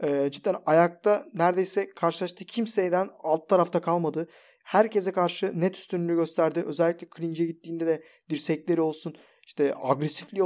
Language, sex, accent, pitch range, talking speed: Turkish, male, native, 165-200 Hz, 120 wpm